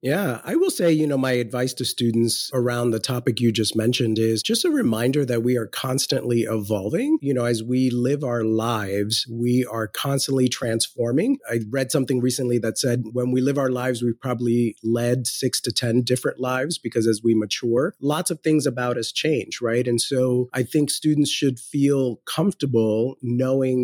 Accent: American